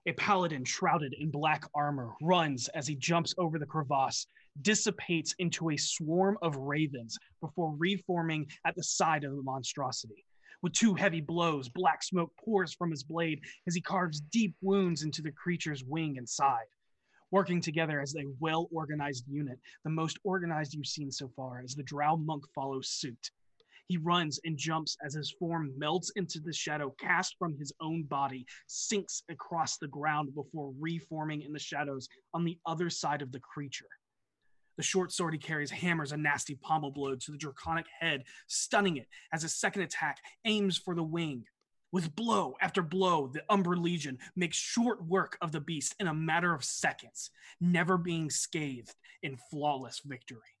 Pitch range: 145-175 Hz